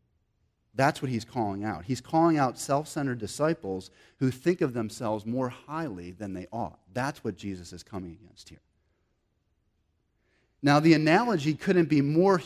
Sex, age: male, 30-49